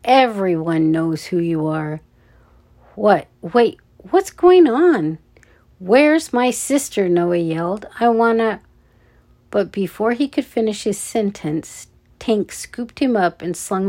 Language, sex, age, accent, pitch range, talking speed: English, female, 50-69, American, 175-230 Hz, 135 wpm